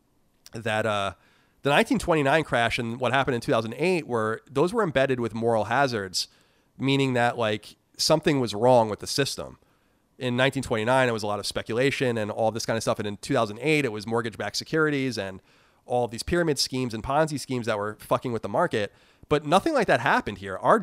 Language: English